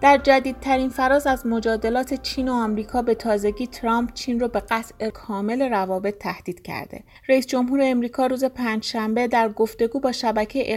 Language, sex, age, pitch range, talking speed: Persian, female, 30-49, 210-260 Hz, 155 wpm